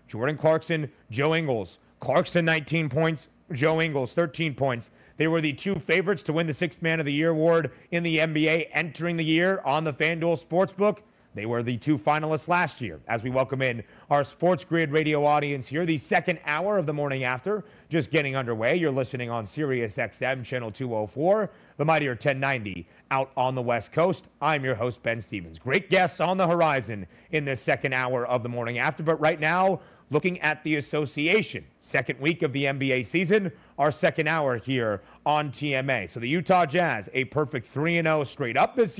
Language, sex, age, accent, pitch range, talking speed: English, male, 30-49, American, 130-170 Hz, 190 wpm